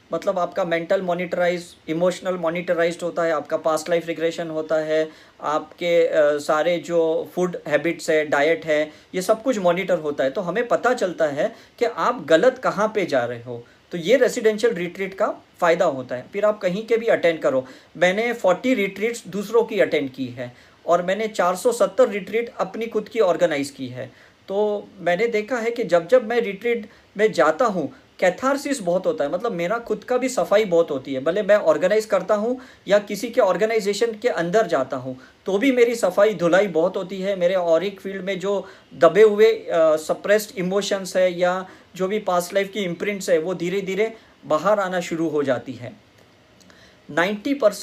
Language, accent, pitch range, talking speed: Hindi, native, 165-215 Hz, 185 wpm